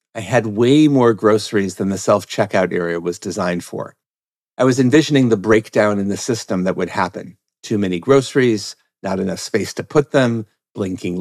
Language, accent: English, American